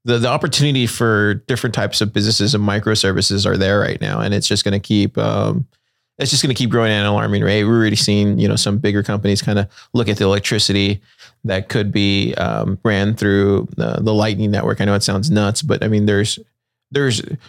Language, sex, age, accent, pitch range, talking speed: English, male, 20-39, American, 105-120 Hz, 225 wpm